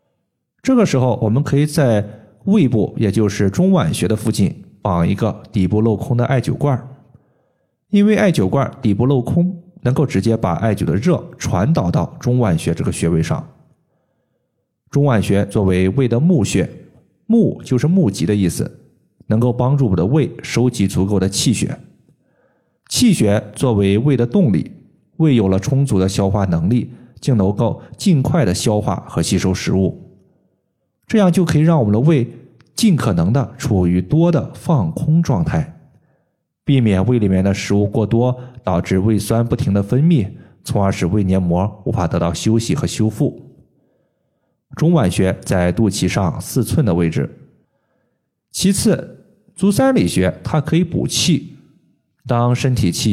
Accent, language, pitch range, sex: native, Chinese, 100-150 Hz, male